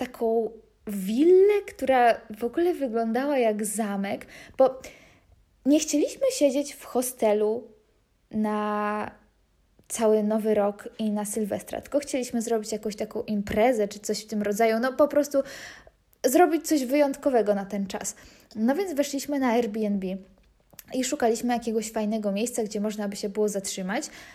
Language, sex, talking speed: Polish, female, 140 wpm